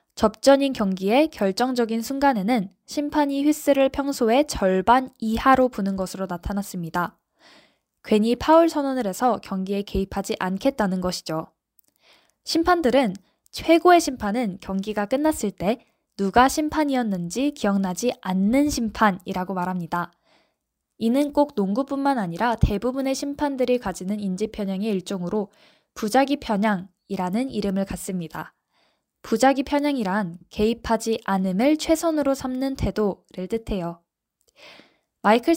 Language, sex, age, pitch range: Korean, female, 10-29, 195-270 Hz